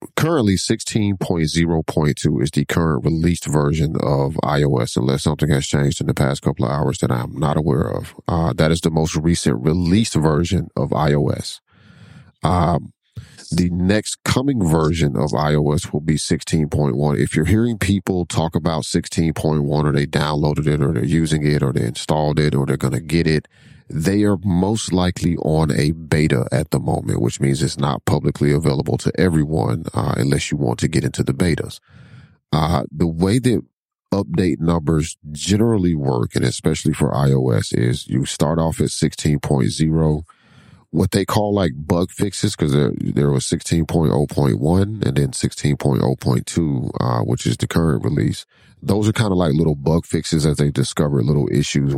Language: English